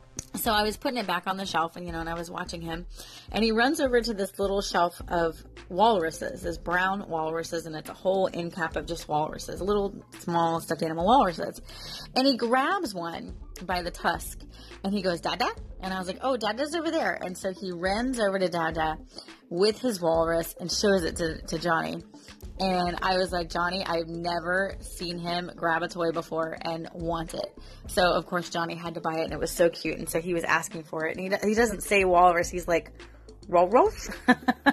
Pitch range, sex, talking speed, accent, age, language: 170-200 Hz, female, 215 wpm, American, 30-49, English